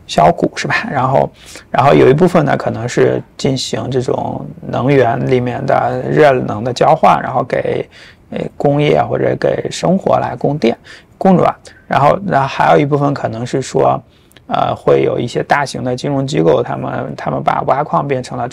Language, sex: Chinese, male